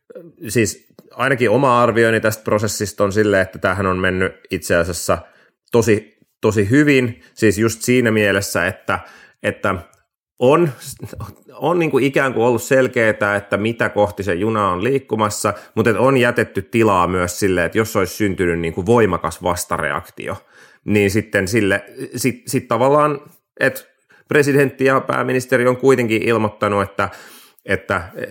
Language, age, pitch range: Finnish, 30-49, 100-120 Hz